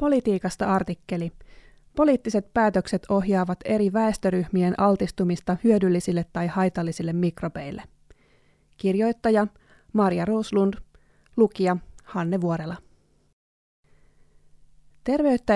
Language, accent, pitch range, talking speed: Finnish, native, 175-215 Hz, 75 wpm